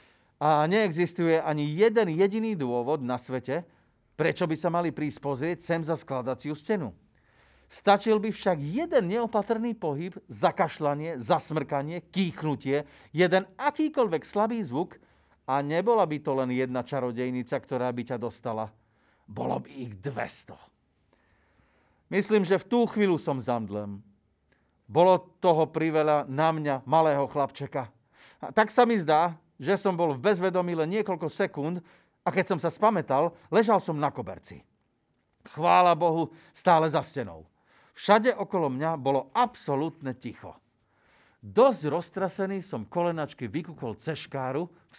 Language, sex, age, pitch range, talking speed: Slovak, male, 40-59, 130-185 Hz, 130 wpm